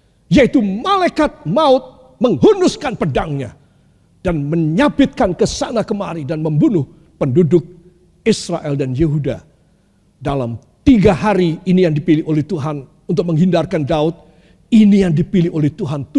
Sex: male